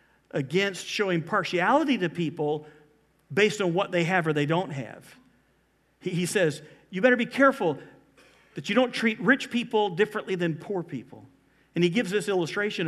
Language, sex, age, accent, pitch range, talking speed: English, male, 50-69, American, 160-225 Hz, 170 wpm